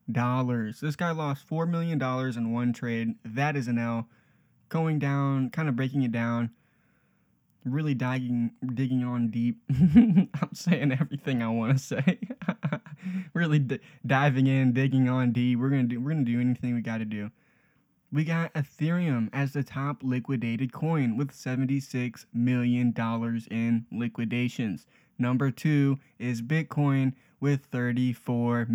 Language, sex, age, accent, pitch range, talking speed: English, male, 20-39, American, 115-140 Hz, 145 wpm